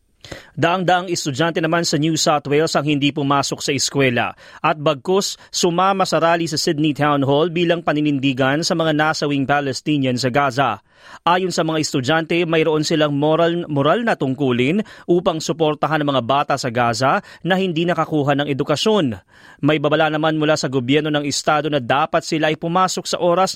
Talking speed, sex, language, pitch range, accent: 170 wpm, male, Filipino, 150-210 Hz, native